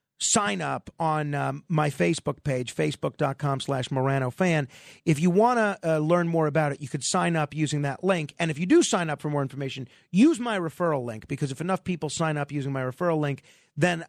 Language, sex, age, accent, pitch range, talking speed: English, male, 40-59, American, 140-185 Hz, 215 wpm